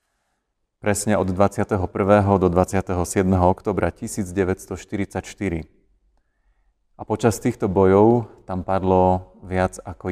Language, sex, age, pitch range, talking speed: Slovak, male, 30-49, 85-100 Hz, 90 wpm